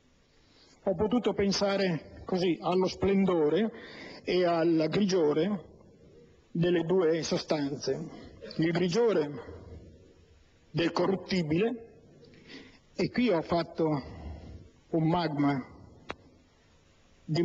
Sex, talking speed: male, 80 wpm